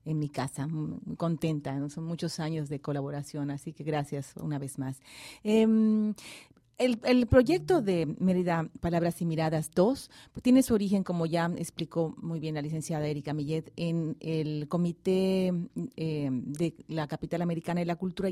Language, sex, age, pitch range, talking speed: English, female, 40-59, 160-205 Hz, 165 wpm